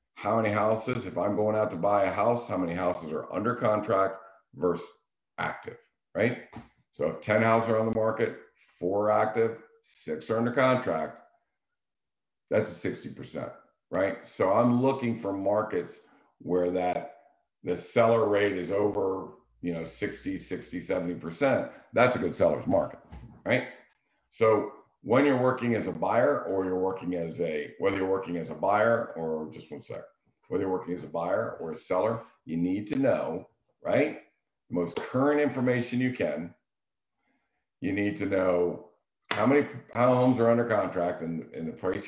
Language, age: English, 50-69